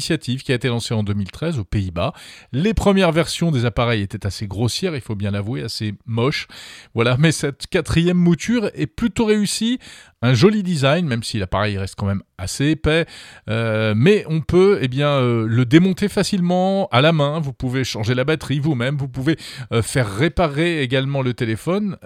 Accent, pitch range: French, 110-160 Hz